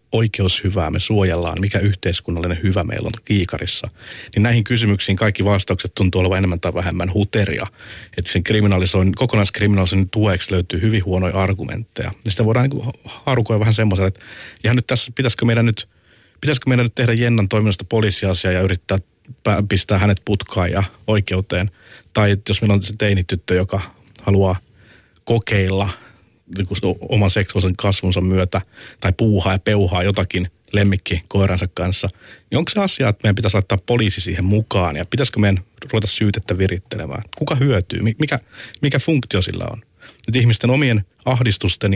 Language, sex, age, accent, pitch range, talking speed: Finnish, male, 50-69, native, 95-110 Hz, 145 wpm